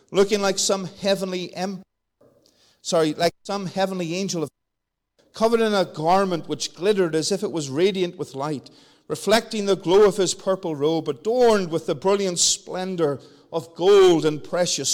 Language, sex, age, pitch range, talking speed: English, male, 50-69, 160-200 Hz, 160 wpm